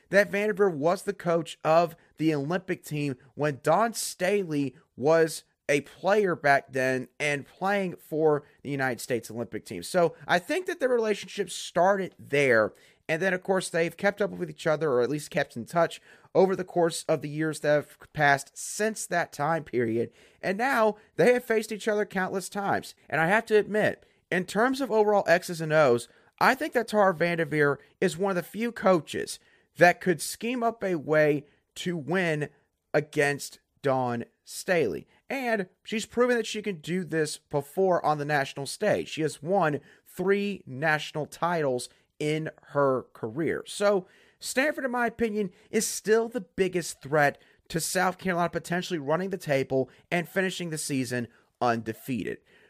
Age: 30-49